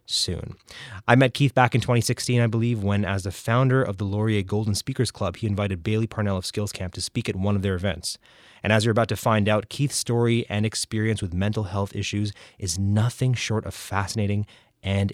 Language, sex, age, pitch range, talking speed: English, male, 20-39, 100-125 Hz, 215 wpm